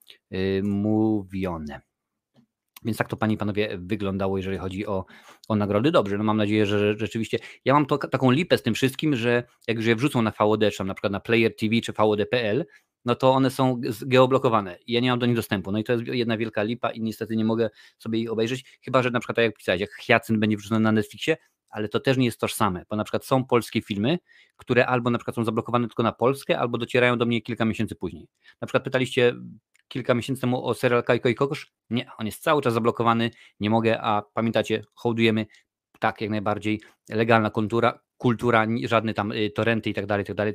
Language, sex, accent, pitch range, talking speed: Polish, male, native, 105-120 Hz, 210 wpm